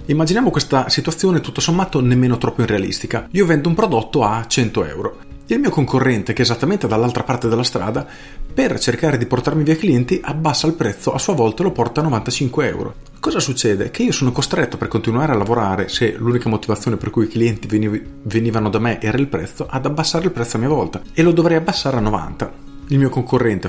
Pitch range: 110-150 Hz